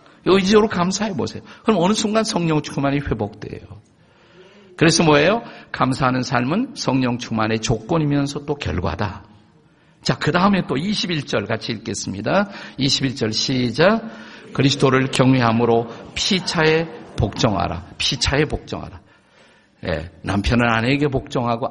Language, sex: Korean, male